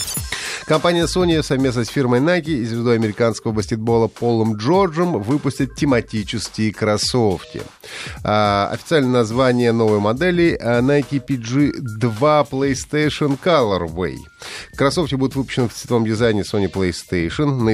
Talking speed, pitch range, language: 110 wpm, 105-140 Hz, Russian